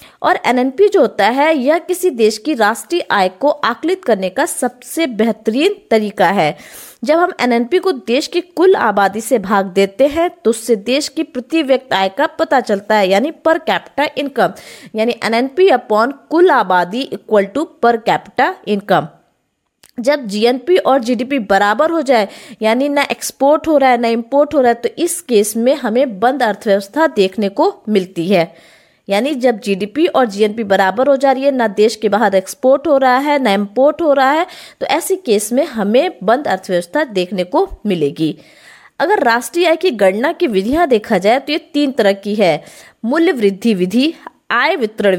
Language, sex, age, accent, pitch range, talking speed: Hindi, female, 20-39, native, 210-295 Hz, 185 wpm